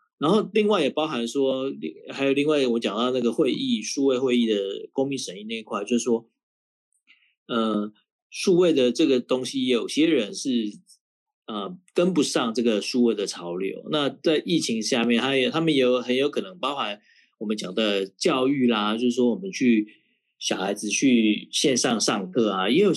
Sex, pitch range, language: male, 110-160 Hz, Chinese